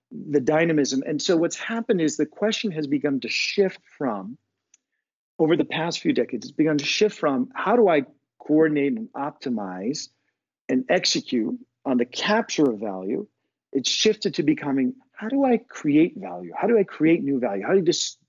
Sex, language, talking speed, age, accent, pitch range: male, English, 180 wpm, 50-69, American, 140-205 Hz